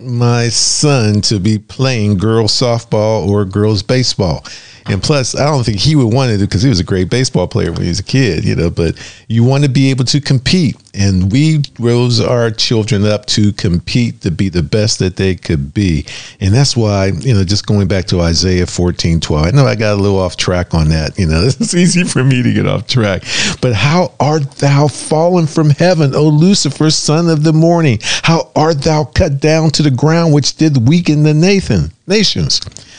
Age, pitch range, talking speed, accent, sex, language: 50-69, 110-155 Hz, 215 wpm, American, male, English